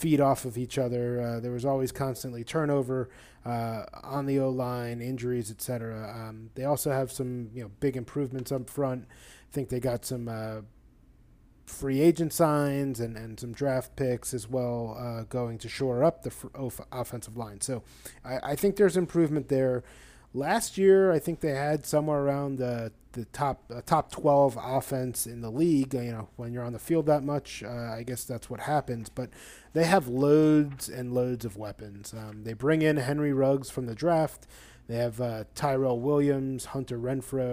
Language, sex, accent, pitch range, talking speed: English, male, American, 120-140 Hz, 190 wpm